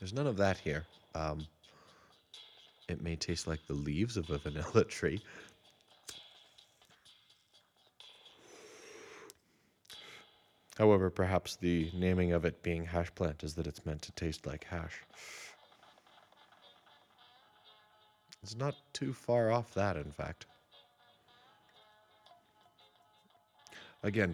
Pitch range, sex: 80-100 Hz, male